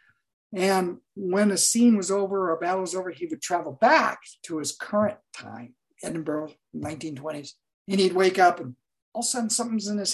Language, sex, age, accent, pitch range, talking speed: English, male, 50-69, American, 150-205 Hz, 195 wpm